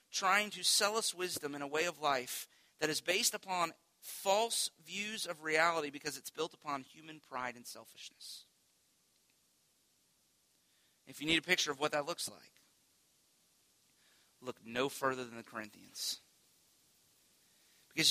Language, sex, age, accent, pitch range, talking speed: English, male, 40-59, American, 145-180 Hz, 145 wpm